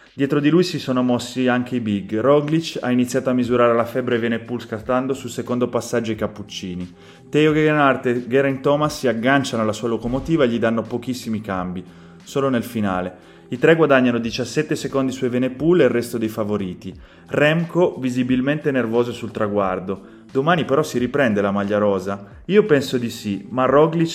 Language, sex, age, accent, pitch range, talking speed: Italian, male, 30-49, native, 110-145 Hz, 185 wpm